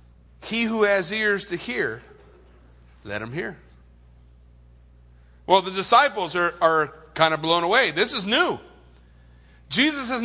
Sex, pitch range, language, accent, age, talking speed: male, 165-250 Hz, English, American, 40-59, 135 wpm